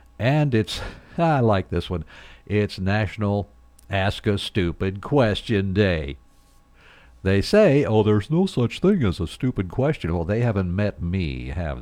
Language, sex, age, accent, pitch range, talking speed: English, male, 60-79, American, 75-110 Hz, 150 wpm